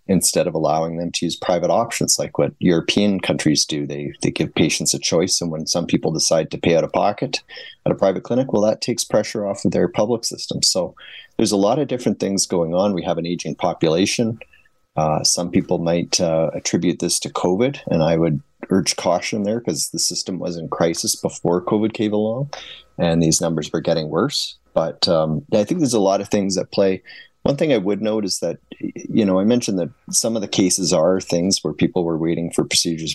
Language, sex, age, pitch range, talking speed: English, male, 30-49, 80-95 Hz, 220 wpm